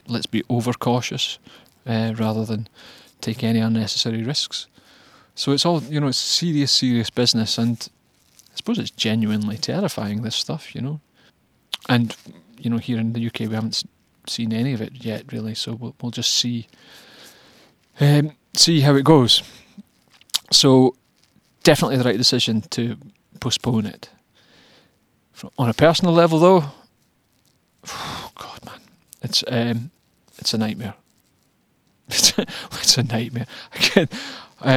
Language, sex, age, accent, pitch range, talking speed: English, male, 30-49, British, 110-125 Hz, 130 wpm